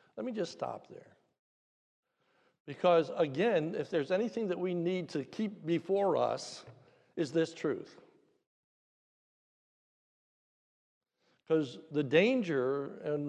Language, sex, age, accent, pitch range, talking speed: English, male, 60-79, American, 140-170 Hz, 110 wpm